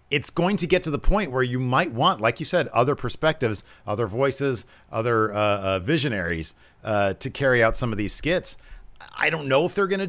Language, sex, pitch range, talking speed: English, male, 105-130 Hz, 220 wpm